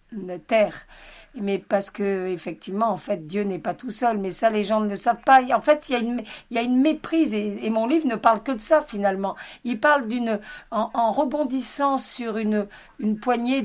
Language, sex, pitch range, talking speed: French, female, 205-245 Hz, 225 wpm